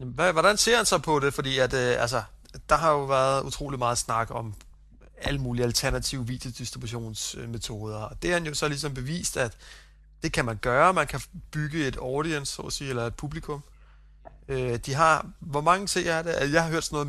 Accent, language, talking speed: native, Danish, 205 wpm